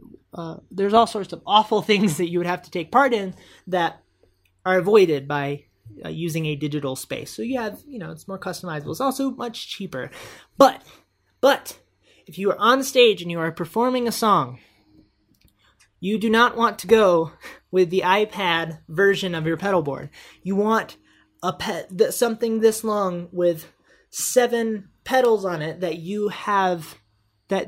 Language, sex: English, male